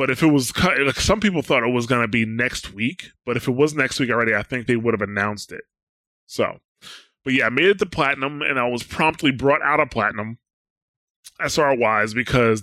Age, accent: 20-39, American